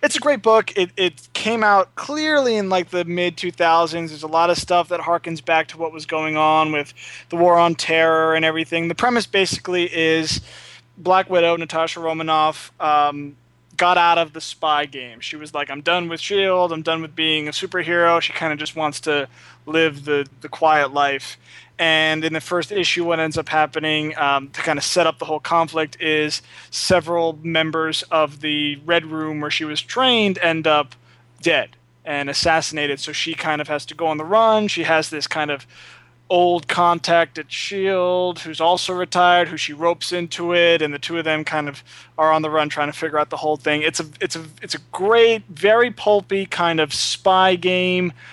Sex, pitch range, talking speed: male, 155-175 Hz, 205 wpm